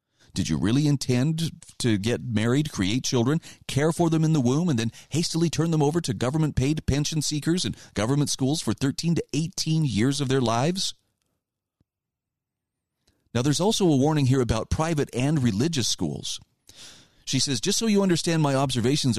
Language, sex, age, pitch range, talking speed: English, male, 40-59, 115-160 Hz, 170 wpm